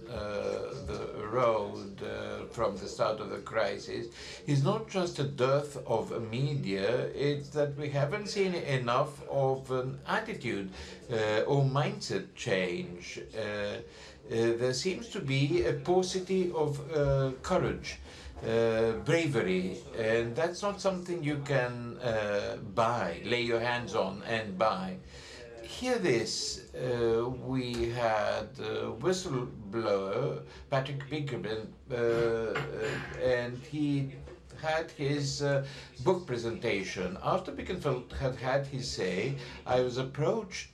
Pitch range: 105-145 Hz